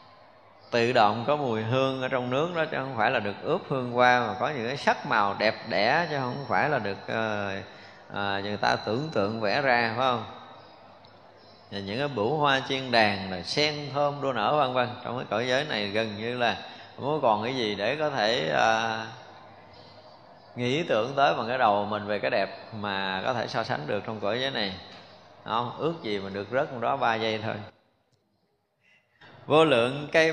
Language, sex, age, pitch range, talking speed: Vietnamese, male, 20-39, 110-155 Hz, 205 wpm